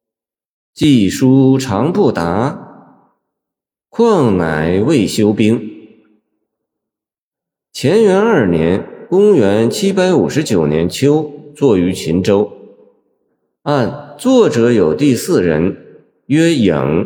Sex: male